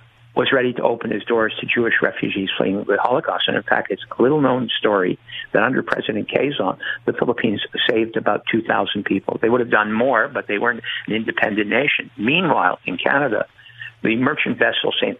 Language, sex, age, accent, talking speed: English, male, 60-79, American, 190 wpm